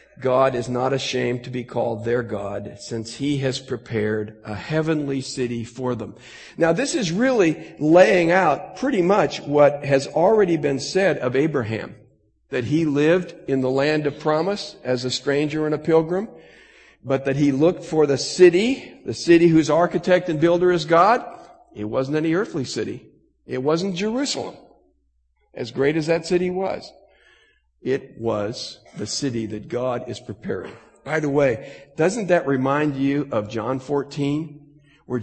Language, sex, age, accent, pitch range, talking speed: English, male, 50-69, American, 125-165 Hz, 160 wpm